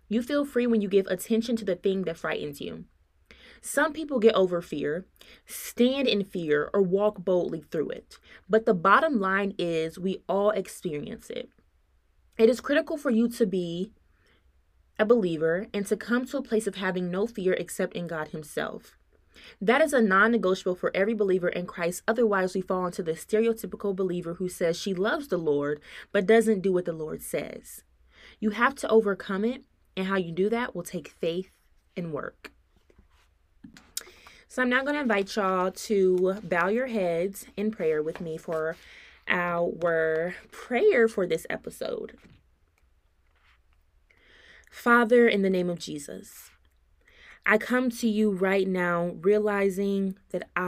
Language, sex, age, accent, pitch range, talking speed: English, female, 20-39, American, 175-220 Hz, 160 wpm